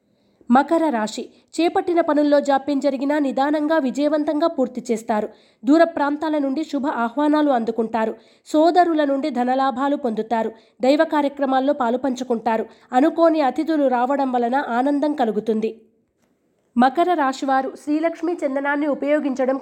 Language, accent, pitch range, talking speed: Telugu, native, 245-300 Hz, 105 wpm